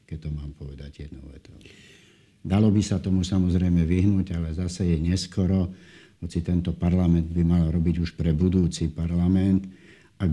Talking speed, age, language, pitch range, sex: 155 wpm, 60-79, Slovak, 80-90 Hz, male